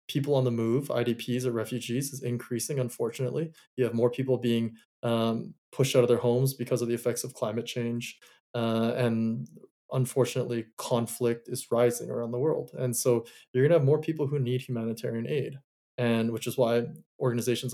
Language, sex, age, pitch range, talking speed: English, male, 20-39, 120-135 Hz, 185 wpm